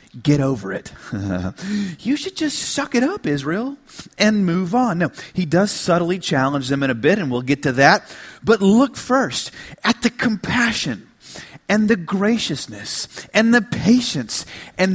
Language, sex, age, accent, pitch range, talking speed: English, male, 40-59, American, 185-280 Hz, 160 wpm